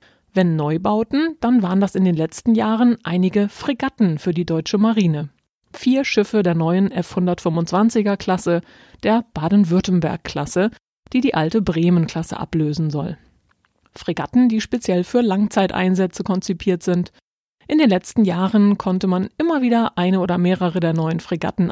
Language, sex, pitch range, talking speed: German, female, 170-215 Hz, 135 wpm